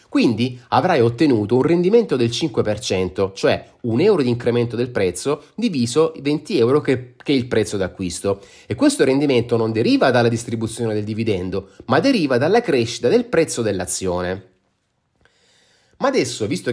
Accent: native